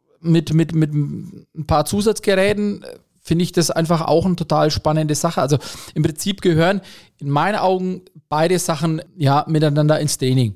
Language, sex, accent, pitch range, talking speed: German, male, German, 150-185 Hz, 155 wpm